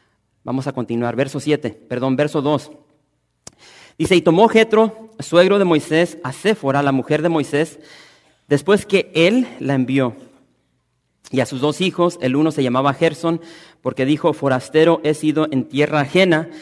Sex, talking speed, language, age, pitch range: male, 160 wpm, English, 40-59, 130-170 Hz